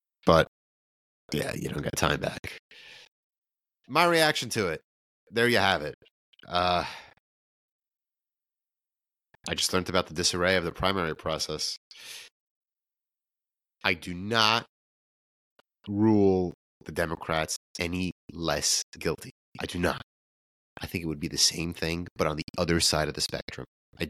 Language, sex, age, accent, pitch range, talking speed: English, male, 30-49, American, 80-125 Hz, 135 wpm